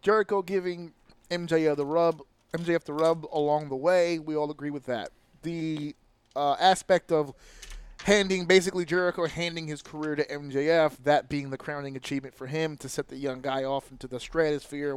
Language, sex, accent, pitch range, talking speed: English, male, American, 145-195 Hz, 175 wpm